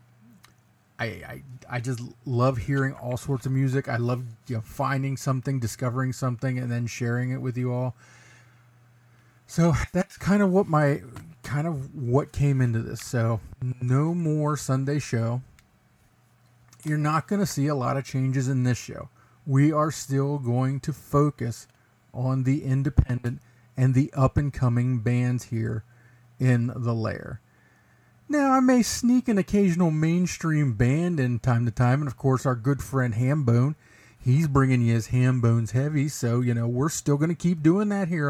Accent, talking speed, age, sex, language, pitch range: American, 170 wpm, 40-59, male, English, 120-140 Hz